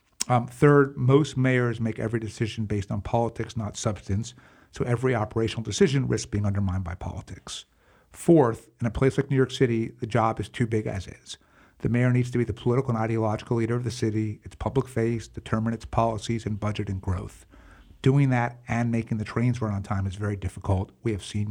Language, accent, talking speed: English, American, 205 wpm